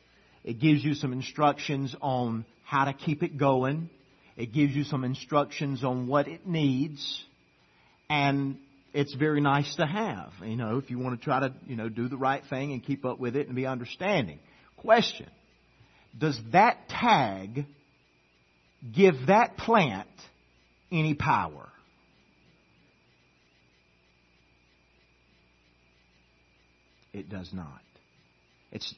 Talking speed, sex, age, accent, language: 125 wpm, male, 50-69, American, English